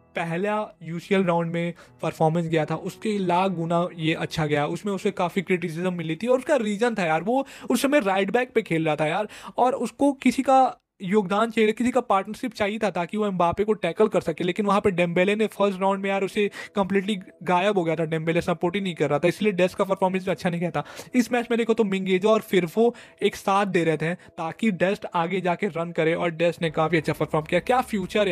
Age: 20-39